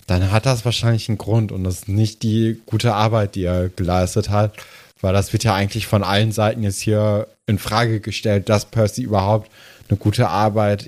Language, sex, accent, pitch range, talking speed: German, male, German, 105-130 Hz, 200 wpm